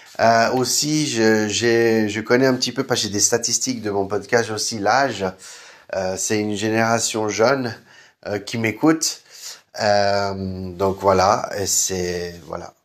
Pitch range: 100-125 Hz